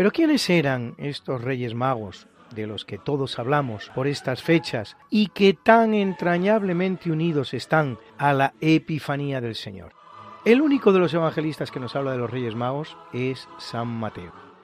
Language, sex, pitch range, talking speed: Spanish, male, 125-180 Hz, 165 wpm